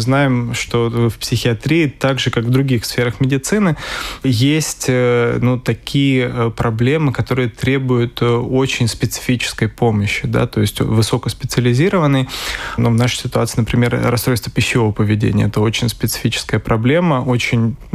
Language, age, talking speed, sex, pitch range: Russian, 20-39, 120 wpm, male, 115-135 Hz